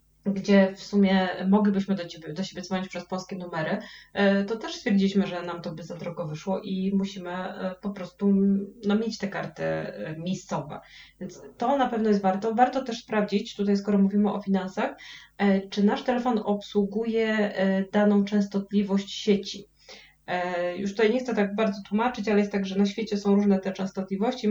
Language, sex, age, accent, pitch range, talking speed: Polish, female, 20-39, native, 180-205 Hz, 165 wpm